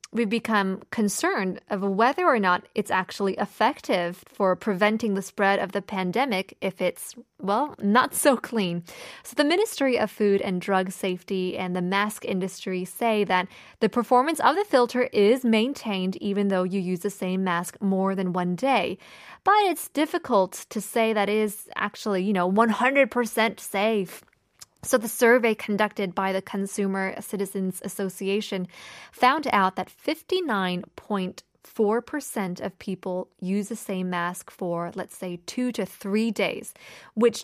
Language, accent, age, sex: Korean, American, 20-39, female